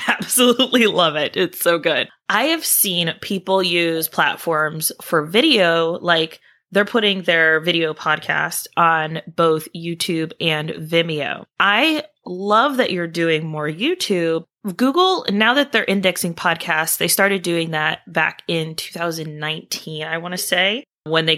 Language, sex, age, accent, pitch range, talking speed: English, female, 20-39, American, 160-205 Hz, 145 wpm